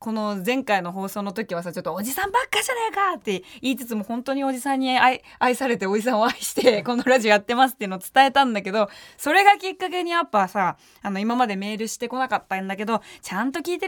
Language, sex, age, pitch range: Japanese, female, 20-39, 205-280 Hz